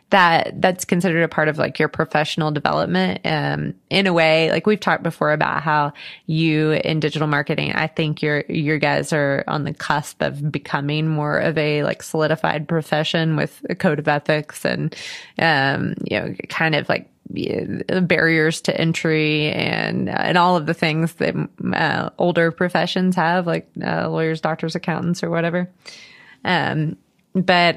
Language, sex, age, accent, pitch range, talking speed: English, female, 20-39, American, 150-180 Hz, 170 wpm